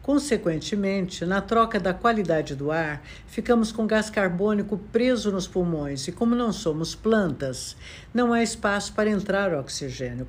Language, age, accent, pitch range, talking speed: Portuguese, 60-79, Brazilian, 165-220 Hz, 145 wpm